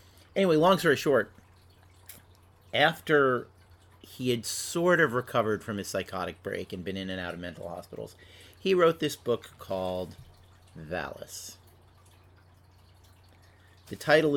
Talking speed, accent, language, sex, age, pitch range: 125 wpm, American, English, male, 40-59, 90-125 Hz